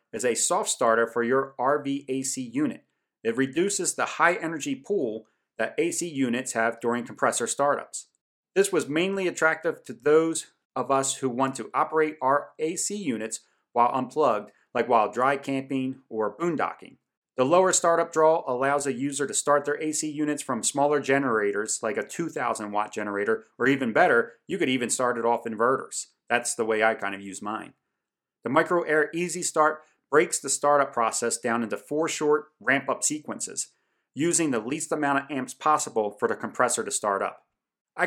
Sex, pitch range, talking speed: male, 115-155 Hz, 175 wpm